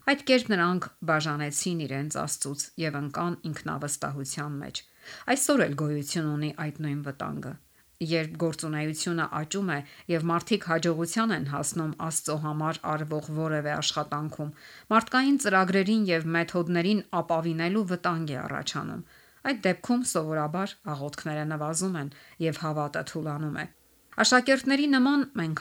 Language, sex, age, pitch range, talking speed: English, female, 50-69, 155-195 Hz, 105 wpm